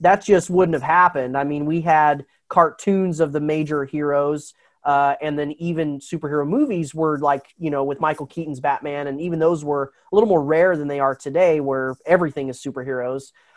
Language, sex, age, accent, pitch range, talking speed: English, male, 30-49, American, 145-175 Hz, 195 wpm